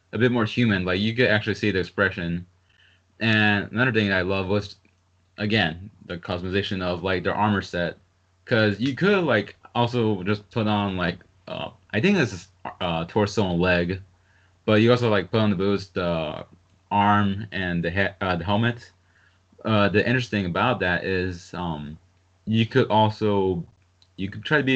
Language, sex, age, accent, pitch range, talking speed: English, male, 20-39, American, 90-105 Hz, 185 wpm